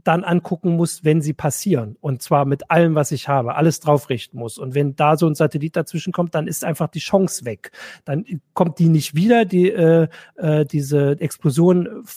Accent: German